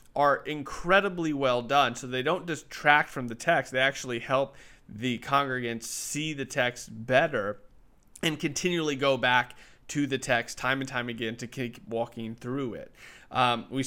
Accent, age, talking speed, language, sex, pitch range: American, 30-49, 165 wpm, English, male, 120-145 Hz